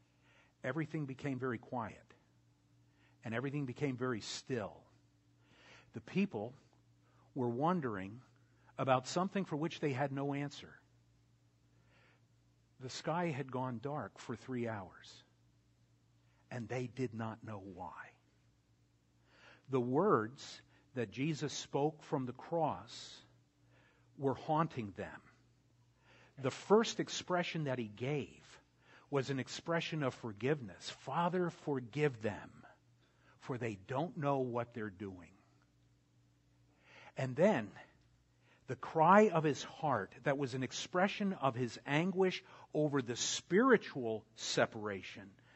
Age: 50-69